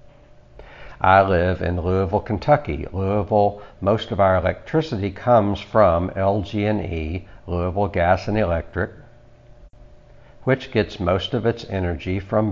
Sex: male